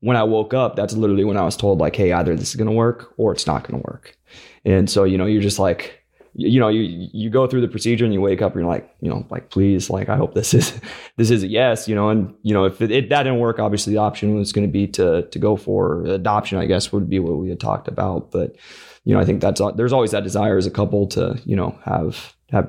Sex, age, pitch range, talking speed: male, 20-39, 95-110 Hz, 290 wpm